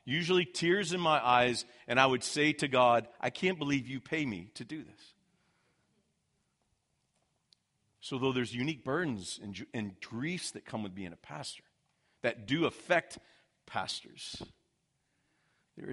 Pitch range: 110-150 Hz